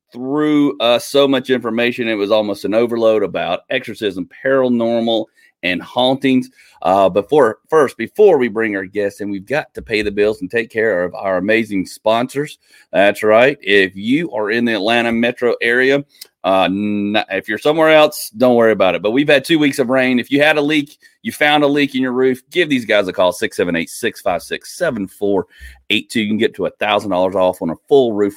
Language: English